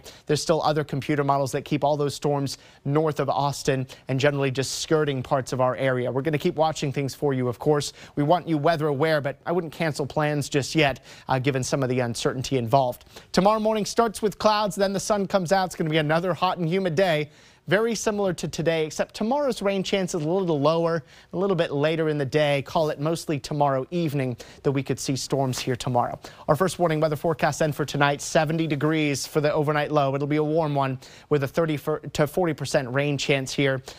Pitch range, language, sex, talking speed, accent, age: 140-170 Hz, English, male, 225 wpm, American, 30-49